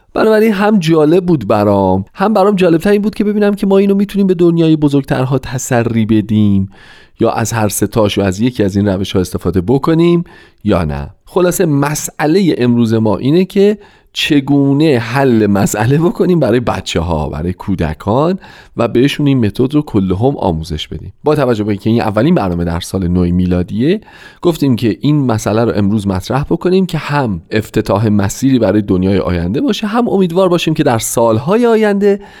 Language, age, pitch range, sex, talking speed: Persian, 40-59, 100-165 Hz, male, 170 wpm